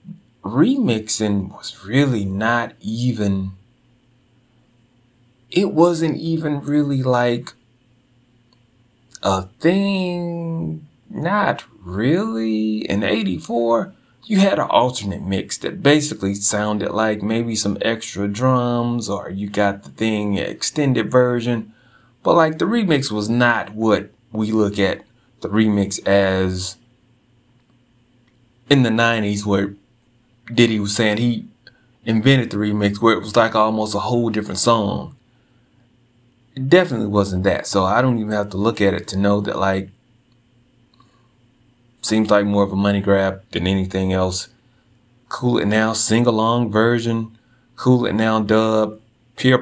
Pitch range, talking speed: 105-125 Hz, 130 wpm